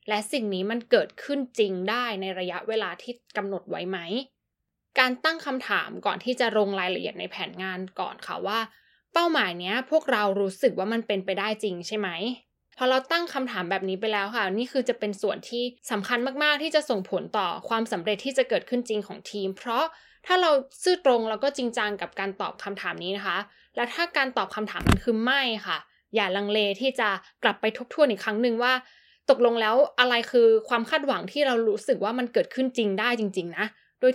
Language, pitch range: Thai, 200-260 Hz